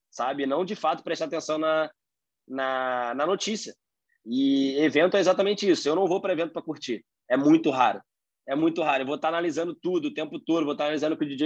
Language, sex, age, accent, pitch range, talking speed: Portuguese, male, 20-39, Brazilian, 145-195 Hz, 230 wpm